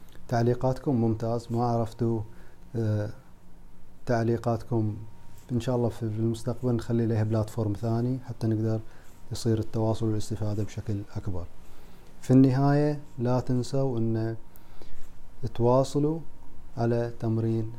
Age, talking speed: 30-49, 100 wpm